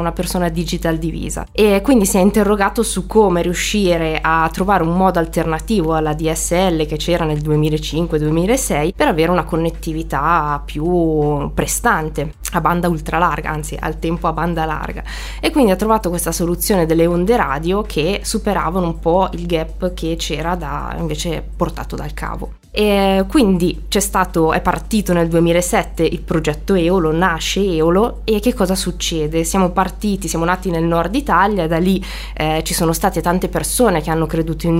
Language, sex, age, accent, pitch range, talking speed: Italian, female, 20-39, native, 165-190 Hz, 165 wpm